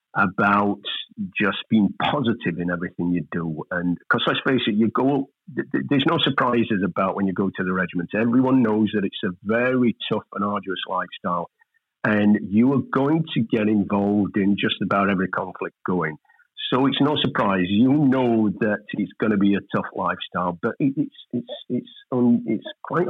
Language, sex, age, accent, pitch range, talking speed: English, male, 50-69, British, 95-125 Hz, 185 wpm